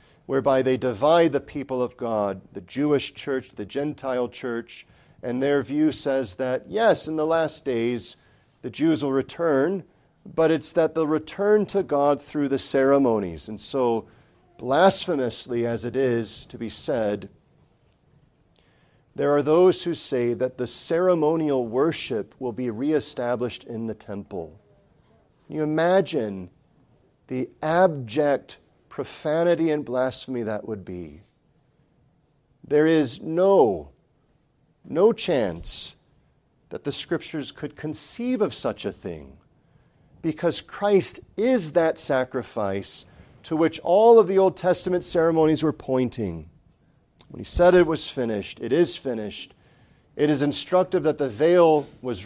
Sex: male